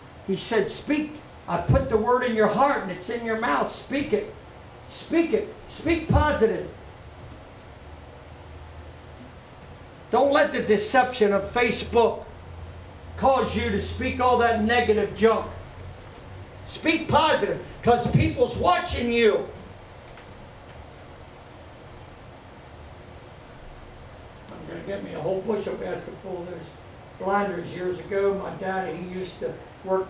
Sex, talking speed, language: male, 120 wpm, English